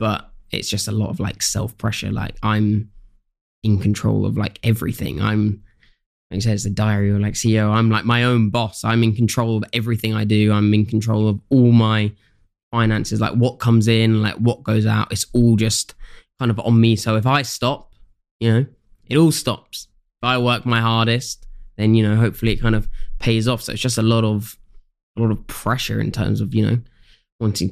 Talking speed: 210 wpm